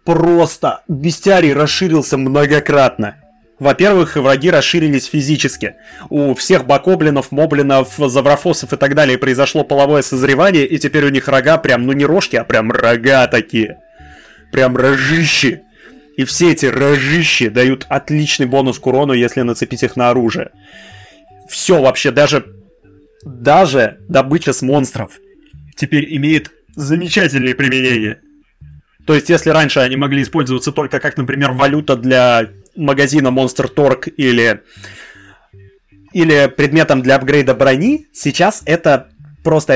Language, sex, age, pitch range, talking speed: Russian, male, 20-39, 130-155 Hz, 125 wpm